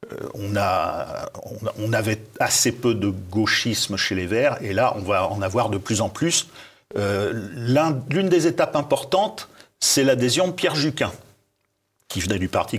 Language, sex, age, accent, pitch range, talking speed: French, male, 50-69, French, 100-135 Hz, 170 wpm